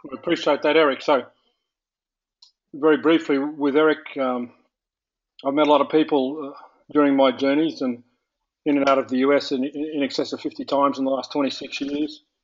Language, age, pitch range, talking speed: English, 40-59, 135-150 Hz, 185 wpm